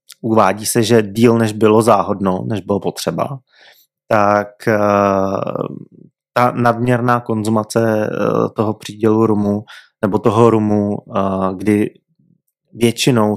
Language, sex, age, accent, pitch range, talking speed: Czech, male, 20-39, native, 100-120 Hz, 100 wpm